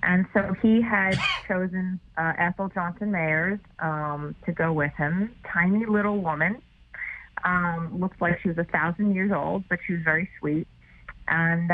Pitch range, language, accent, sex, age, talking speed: 155-185 Hz, English, American, female, 30-49, 165 wpm